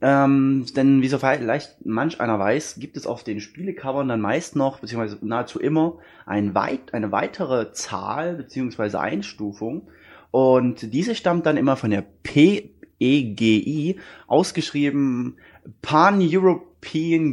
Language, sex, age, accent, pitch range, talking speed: German, male, 20-39, German, 105-145 Hz, 120 wpm